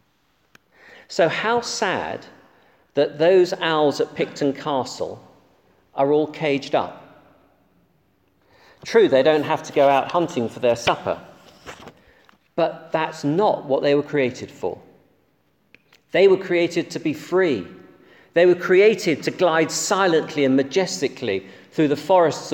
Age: 40-59